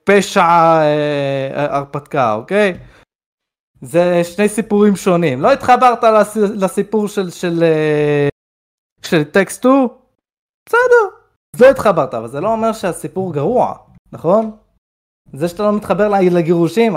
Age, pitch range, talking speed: 20-39, 130-205 Hz, 110 wpm